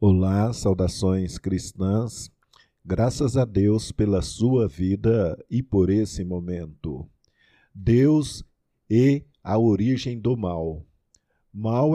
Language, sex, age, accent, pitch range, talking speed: Portuguese, male, 50-69, Brazilian, 100-125 Hz, 100 wpm